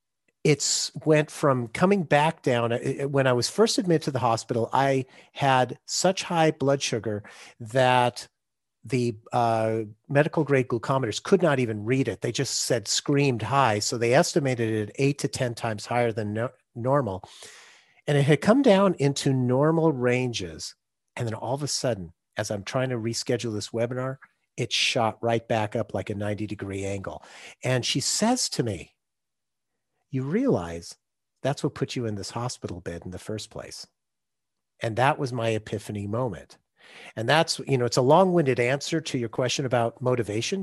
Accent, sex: American, male